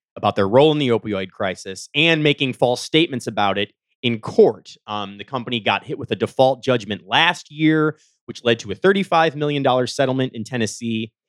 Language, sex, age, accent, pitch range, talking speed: English, male, 30-49, American, 110-160 Hz, 185 wpm